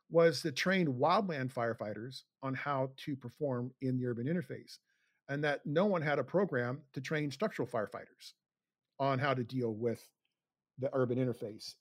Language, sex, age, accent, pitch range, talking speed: English, male, 50-69, American, 125-150 Hz, 165 wpm